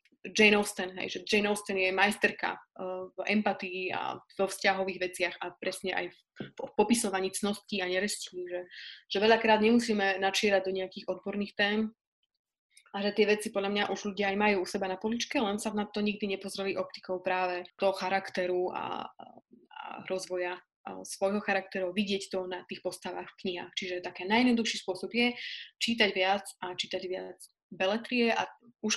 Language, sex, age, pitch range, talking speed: Slovak, female, 20-39, 185-215 Hz, 175 wpm